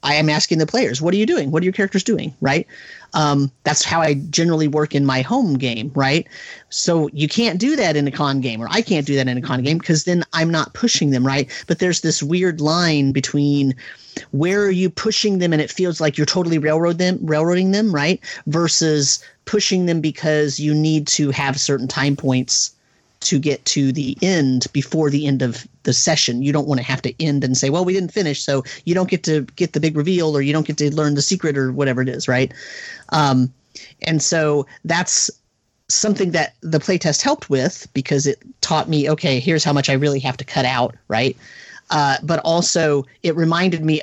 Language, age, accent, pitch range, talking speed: English, 30-49, American, 135-170 Hz, 220 wpm